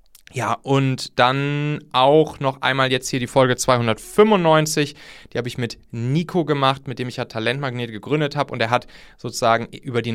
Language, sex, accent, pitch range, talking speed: German, male, German, 115-150 Hz, 175 wpm